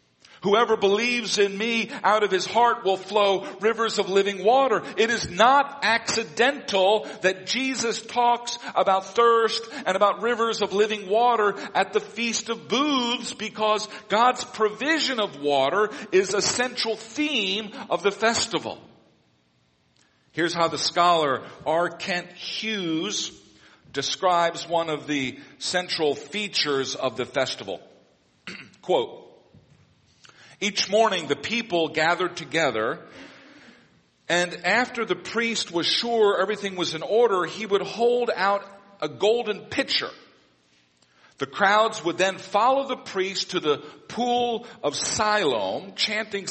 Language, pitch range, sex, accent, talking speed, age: English, 170-225 Hz, male, American, 130 wpm, 50-69